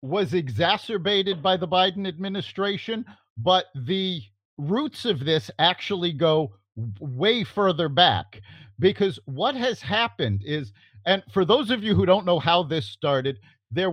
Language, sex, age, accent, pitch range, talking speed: English, male, 50-69, American, 130-205 Hz, 140 wpm